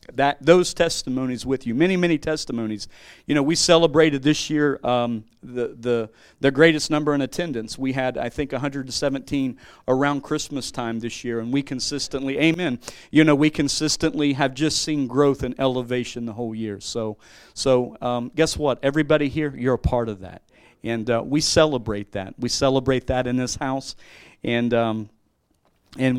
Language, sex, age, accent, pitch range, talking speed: English, male, 40-59, American, 120-145 Hz, 170 wpm